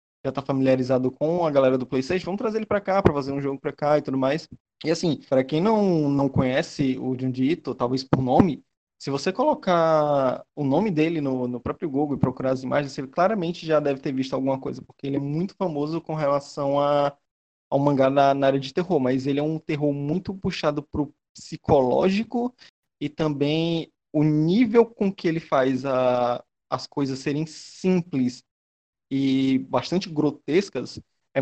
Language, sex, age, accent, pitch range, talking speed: Portuguese, male, 20-39, Brazilian, 135-185 Hz, 185 wpm